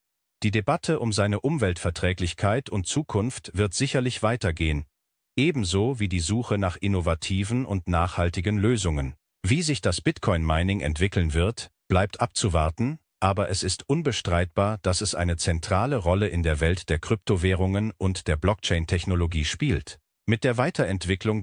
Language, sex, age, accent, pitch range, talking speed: German, male, 50-69, German, 85-110 Hz, 135 wpm